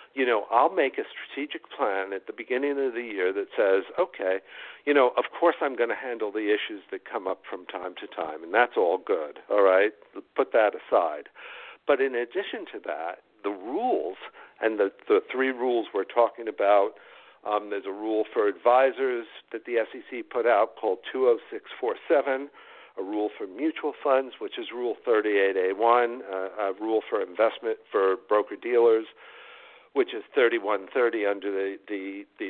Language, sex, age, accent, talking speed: English, male, 60-79, American, 170 wpm